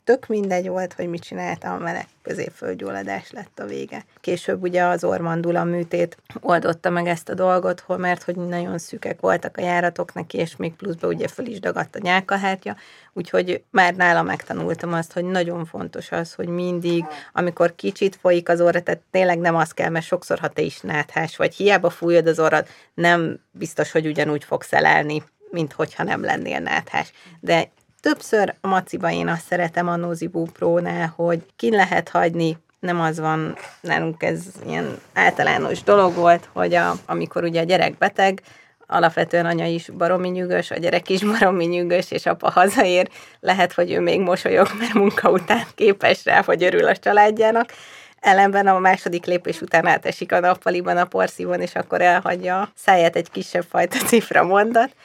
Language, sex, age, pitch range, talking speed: Hungarian, female, 30-49, 165-185 Hz, 170 wpm